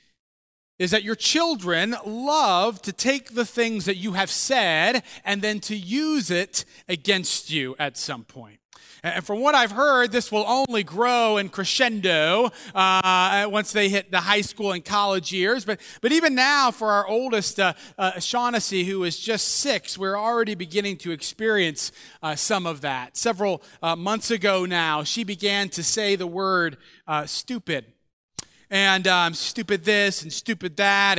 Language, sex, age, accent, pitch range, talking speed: English, male, 30-49, American, 185-240 Hz, 165 wpm